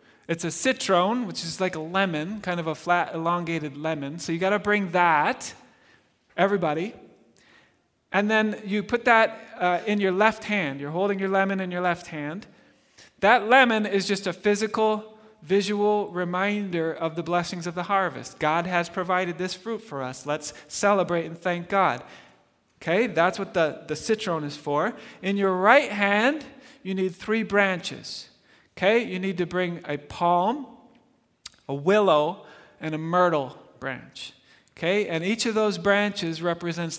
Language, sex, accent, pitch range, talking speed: English, male, American, 155-205 Hz, 165 wpm